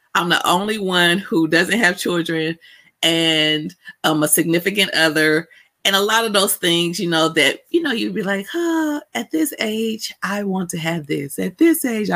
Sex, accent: female, American